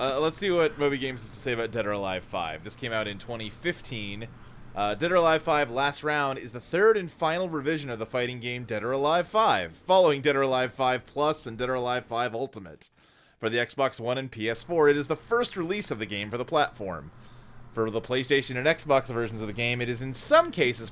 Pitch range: 110-150 Hz